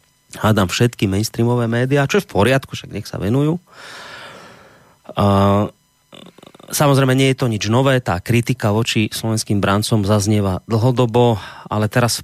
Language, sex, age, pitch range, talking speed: Slovak, male, 30-49, 95-130 Hz, 140 wpm